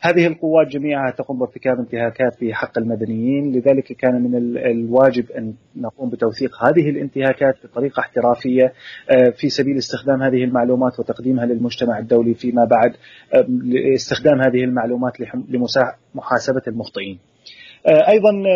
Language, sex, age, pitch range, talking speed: Arabic, male, 30-49, 120-130 Hz, 115 wpm